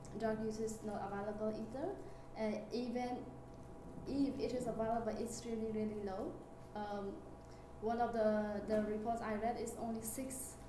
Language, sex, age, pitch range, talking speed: English, female, 20-39, 205-230 Hz, 155 wpm